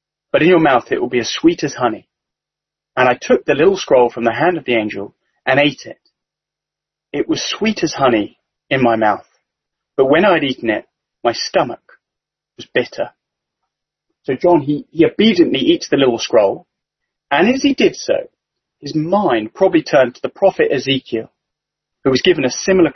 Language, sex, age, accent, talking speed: English, male, 30-49, British, 185 wpm